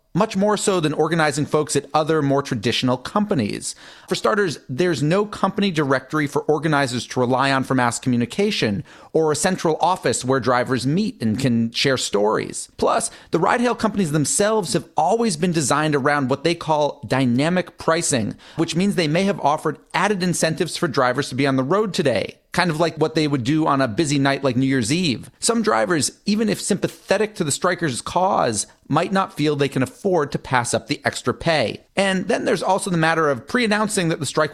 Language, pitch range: English, 135-190 Hz